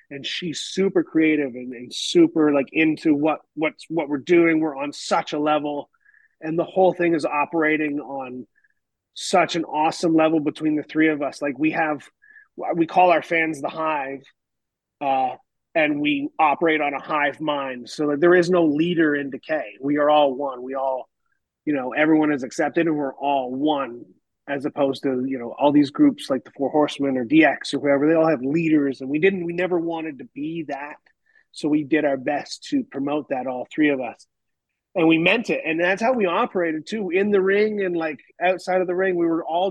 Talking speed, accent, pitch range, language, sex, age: 210 wpm, American, 145-180 Hz, English, male, 30-49